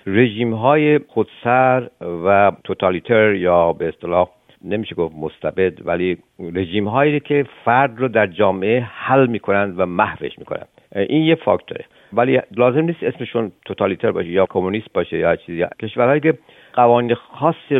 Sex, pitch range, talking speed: male, 95-125 Hz, 145 wpm